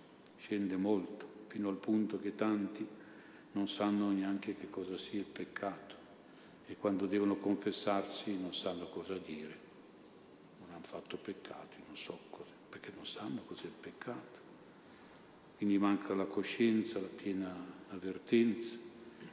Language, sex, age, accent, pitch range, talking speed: Italian, male, 50-69, native, 95-110 Hz, 135 wpm